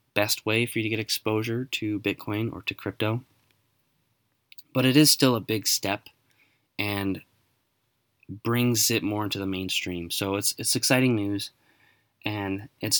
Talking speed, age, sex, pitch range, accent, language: 150 wpm, 20-39, male, 105-125 Hz, American, English